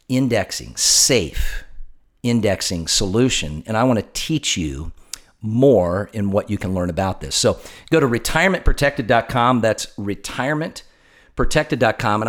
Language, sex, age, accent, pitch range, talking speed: English, male, 50-69, American, 105-130 Hz, 120 wpm